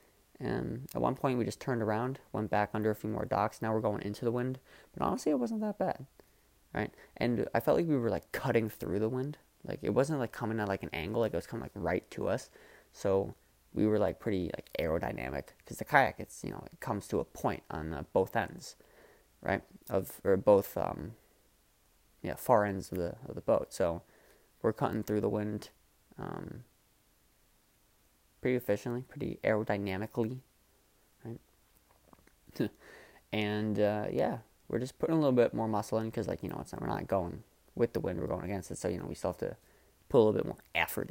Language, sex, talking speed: English, male, 210 wpm